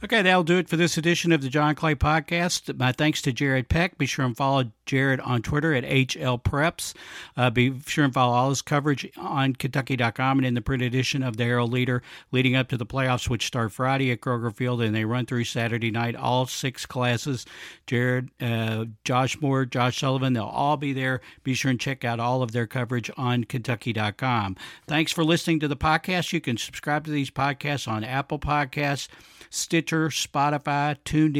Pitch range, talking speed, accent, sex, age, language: 125-145 Hz, 200 wpm, American, male, 50-69, English